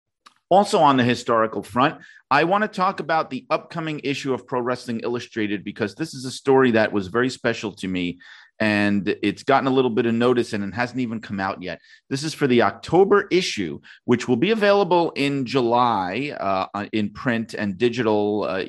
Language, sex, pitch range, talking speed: English, male, 105-135 Hz, 195 wpm